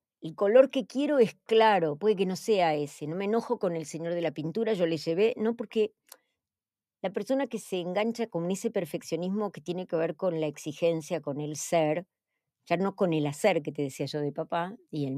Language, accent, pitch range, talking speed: Spanish, Argentinian, 150-200 Hz, 220 wpm